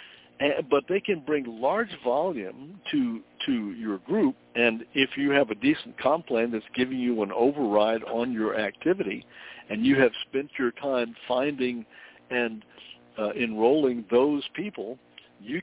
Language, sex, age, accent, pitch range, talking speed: English, male, 60-79, American, 110-140 Hz, 155 wpm